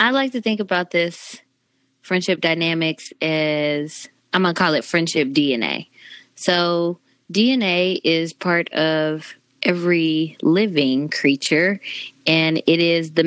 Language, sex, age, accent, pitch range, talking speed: English, female, 20-39, American, 150-180 Hz, 125 wpm